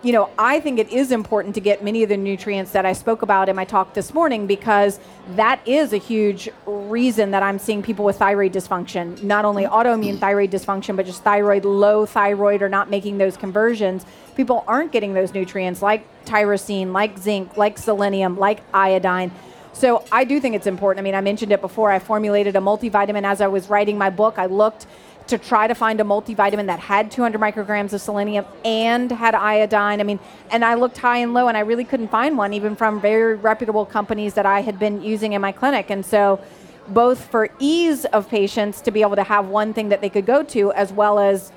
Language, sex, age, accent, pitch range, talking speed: English, female, 30-49, American, 200-220 Hz, 220 wpm